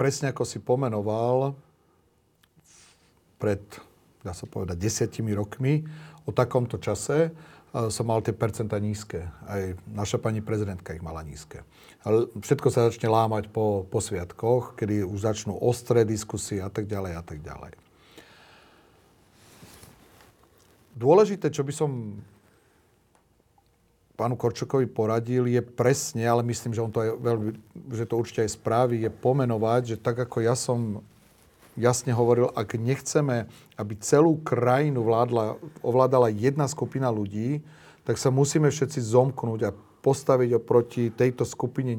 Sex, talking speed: male, 135 wpm